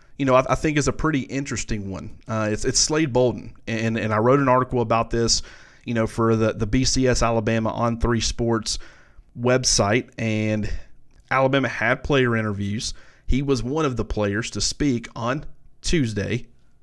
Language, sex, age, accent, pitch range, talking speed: English, male, 30-49, American, 115-130 Hz, 170 wpm